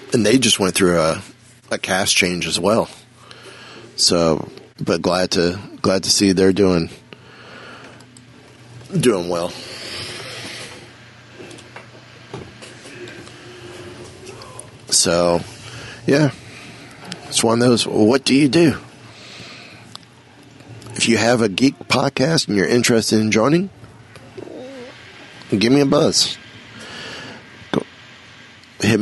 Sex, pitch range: male, 95-125 Hz